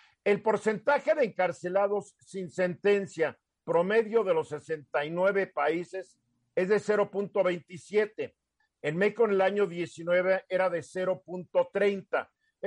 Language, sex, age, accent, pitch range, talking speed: Spanish, male, 50-69, Mexican, 170-225 Hz, 110 wpm